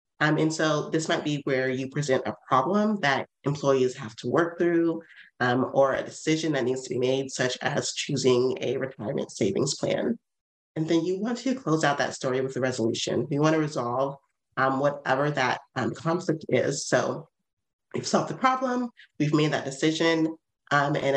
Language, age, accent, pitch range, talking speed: English, 30-49, American, 130-165 Hz, 185 wpm